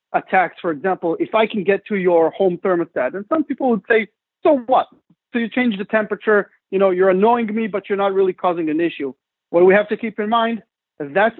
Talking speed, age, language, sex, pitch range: 225 wpm, 40-59, English, male, 180-230 Hz